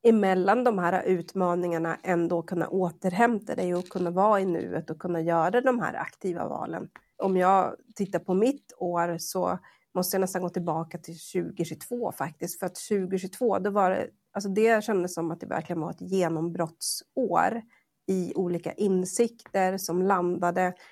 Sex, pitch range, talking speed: female, 175-210 Hz, 160 wpm